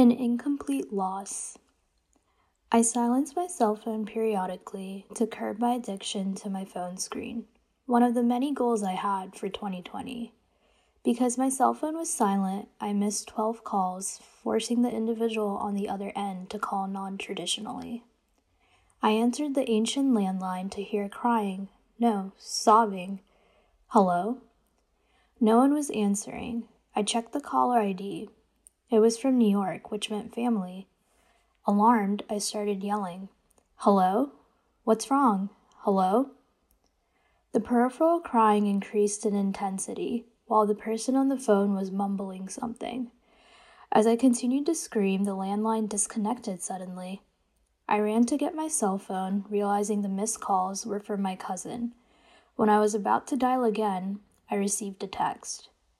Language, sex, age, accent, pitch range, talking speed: English, female, 10-29, American, 200-240 Hz, 140 wpm